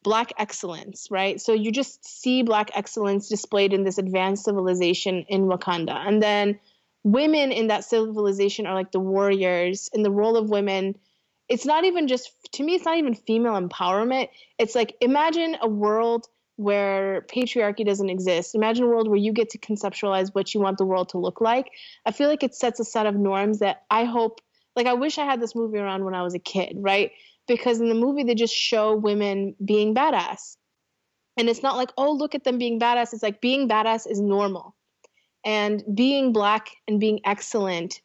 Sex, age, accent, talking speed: female, 20-39, American, 195 wpm